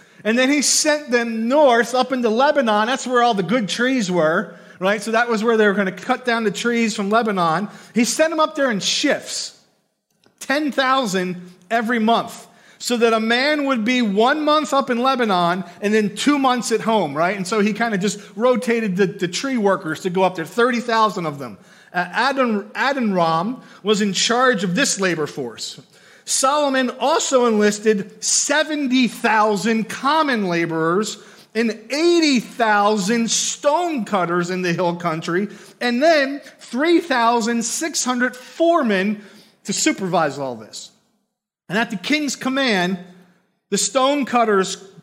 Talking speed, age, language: 150 wpm, 40-59, English